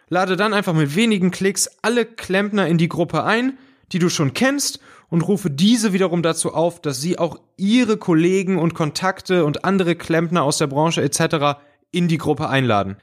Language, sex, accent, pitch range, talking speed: German, male, German, 145-180 Hz, 185 wpm